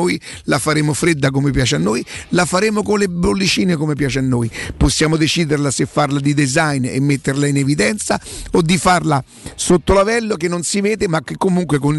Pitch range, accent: 145-190 Hz, native